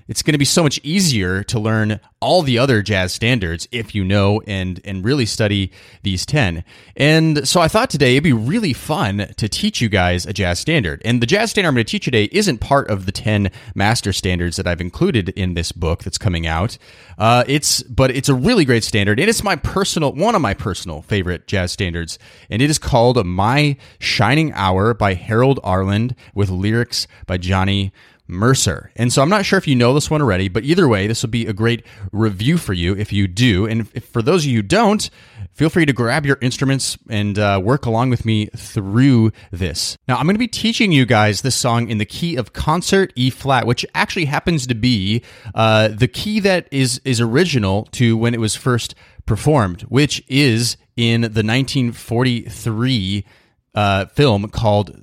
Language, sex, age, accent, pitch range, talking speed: English, male, 30-49, American, 100-130 Hz, 205 wpm